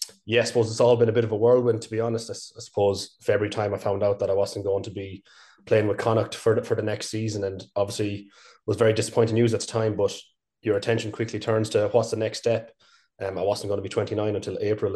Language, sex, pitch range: English, male, 100-115 Hz